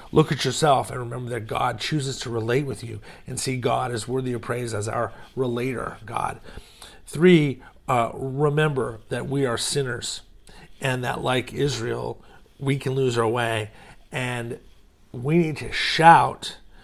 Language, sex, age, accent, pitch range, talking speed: English, male, 40-59, American, 115-135 Hz, 155 wpm